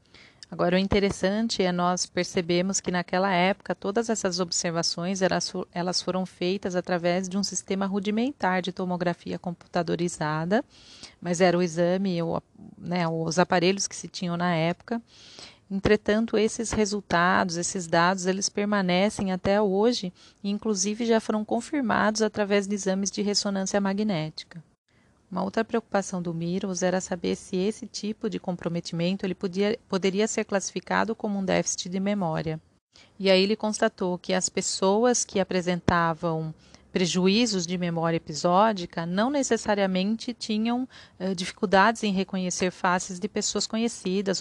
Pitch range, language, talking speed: 180-215 Hz, Portuguese, 135 wpm